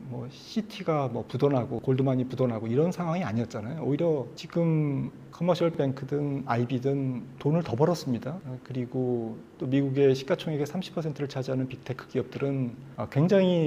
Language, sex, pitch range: Korean, male, 125-160 Hz